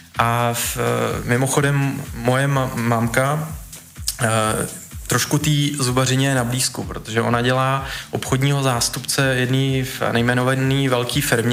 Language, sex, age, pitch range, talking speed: Czech, male, 20-39, 120-140 Hz, 115 wpm